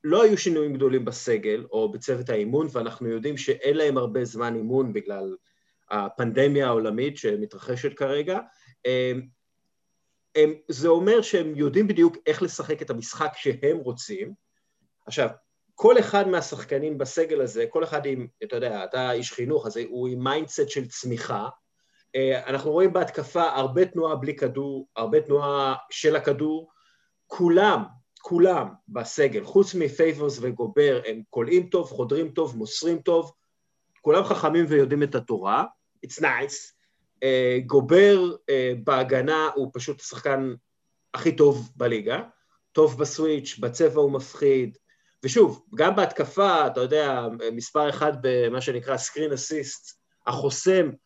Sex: male